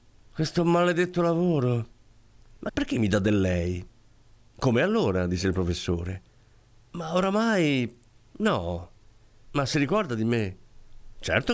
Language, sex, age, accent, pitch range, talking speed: Italian, male, 50-69, native, 105-145 Hz, 120 wpm